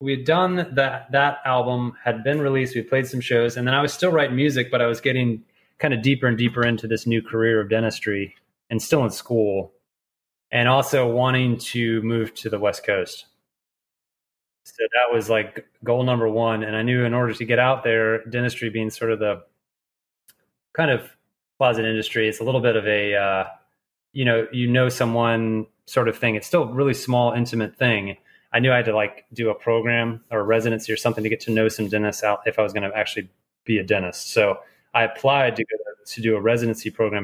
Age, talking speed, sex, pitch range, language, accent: 30-49, 215 wpm, male, 105-125 Hz, English, American